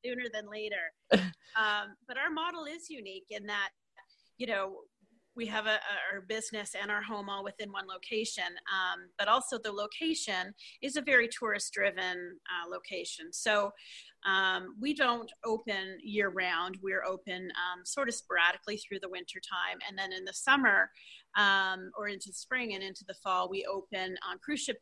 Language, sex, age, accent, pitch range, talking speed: English, female, 30-49, American, 195-230 Hz, 175 wpm